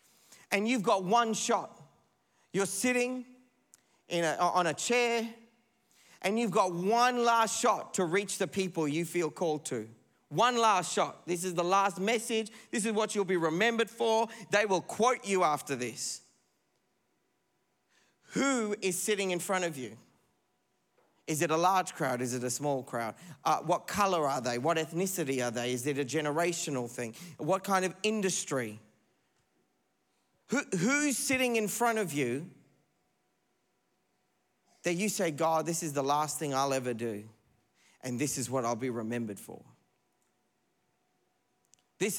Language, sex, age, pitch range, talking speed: English, male, 40-59, 135-205 Hz, 155 wpm